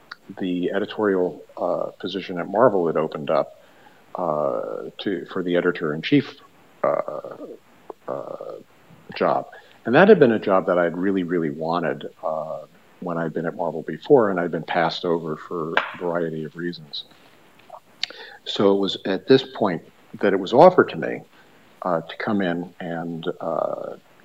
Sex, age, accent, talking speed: male, 50-69, American, 160 wpm